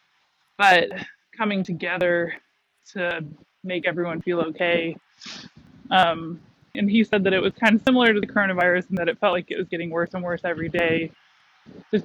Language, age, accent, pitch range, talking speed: English, 20-39, American, 170-195 Hz, 175 wpm